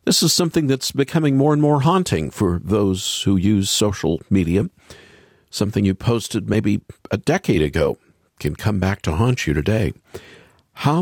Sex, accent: male, American